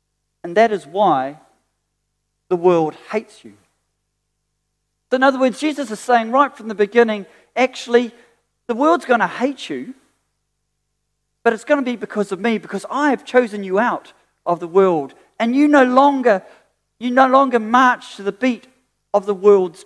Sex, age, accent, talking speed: male, 40-59, British, 170 wpm